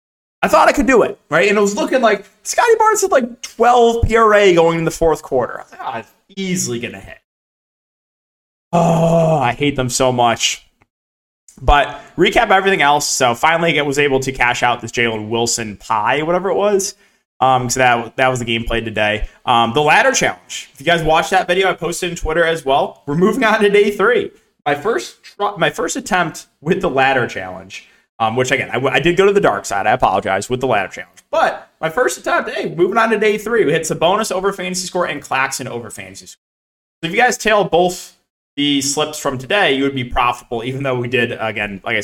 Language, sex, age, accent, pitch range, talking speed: English, male, 20-39, American, 120-185 Hz, 225 wpm